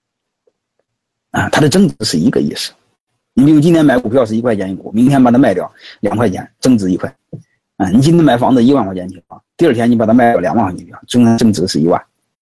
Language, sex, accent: Chinese, male, native